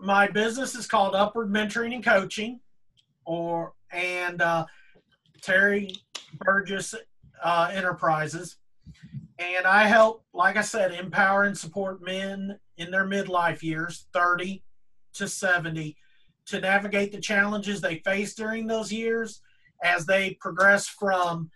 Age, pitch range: 40-59, 170-205 Hz